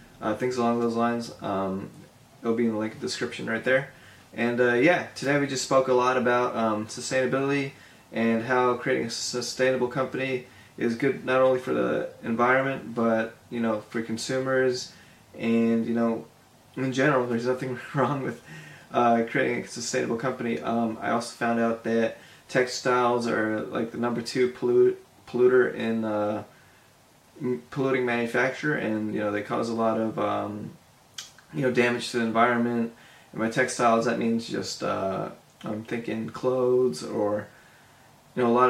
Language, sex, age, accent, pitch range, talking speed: English, male, 20-39, American, 115-130 Hz, 165 wpm